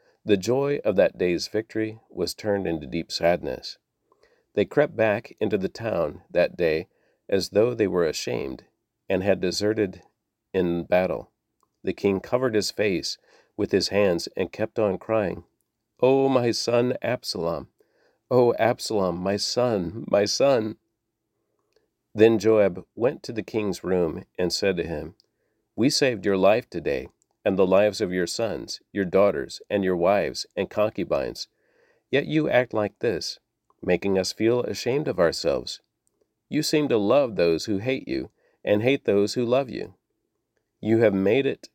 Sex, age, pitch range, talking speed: male, 50-69, 100-130 Hz, 155 wpm